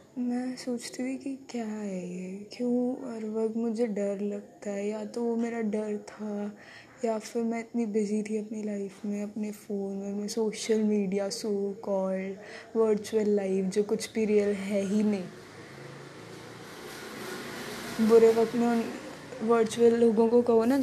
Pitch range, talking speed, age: 205-235 Hz, 155 wpm, 20-39